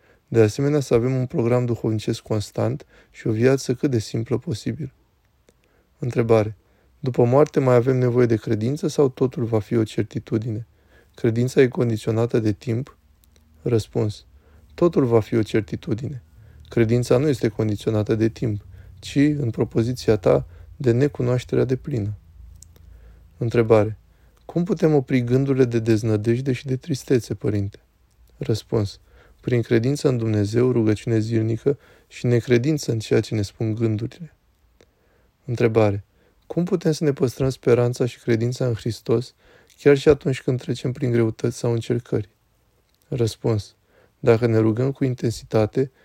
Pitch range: 110-130 Hz